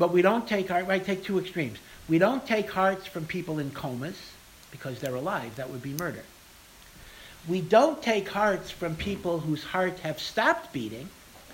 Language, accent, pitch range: English, American, 140-180 Hz